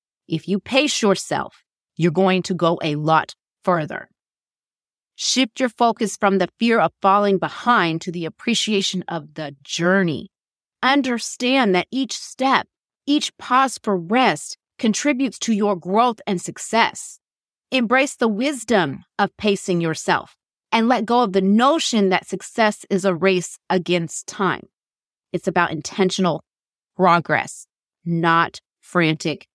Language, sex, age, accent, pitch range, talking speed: English, female, 30-49, American, 175-225 Hz, 130 wpm